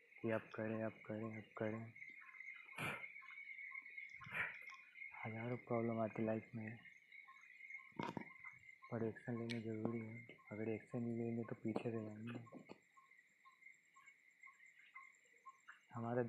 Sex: male